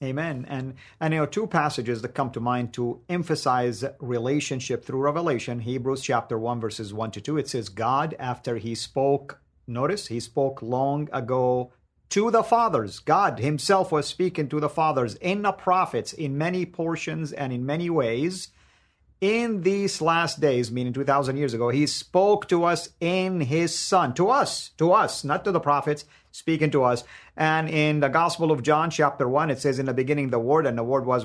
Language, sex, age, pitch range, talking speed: English, male, 50-69, 130-175 Hz, 190 wpm